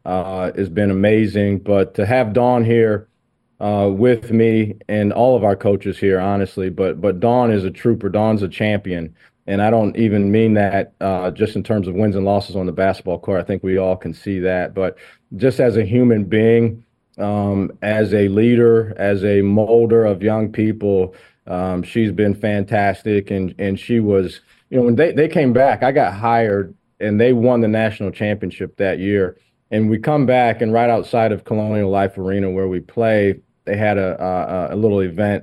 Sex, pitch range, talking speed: male, 100-115 Hz, 195 wpm